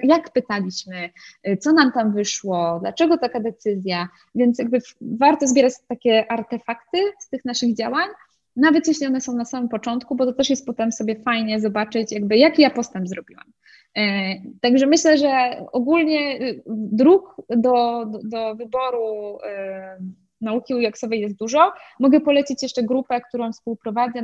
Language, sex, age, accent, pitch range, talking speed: Polish, female, 20-39, native, 215-255 Hz, 145 wpm